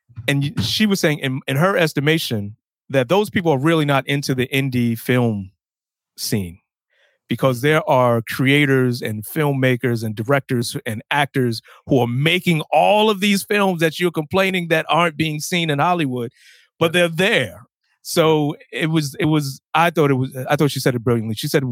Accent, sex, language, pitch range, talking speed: American, male, English, 110-145 Hz, 180 wpm